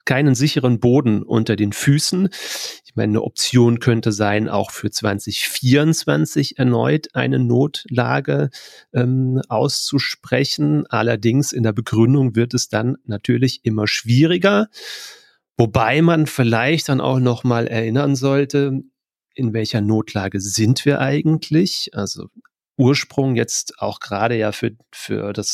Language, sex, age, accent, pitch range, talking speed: German, male, 40-59, German, 115-140 Hz, 125 wpm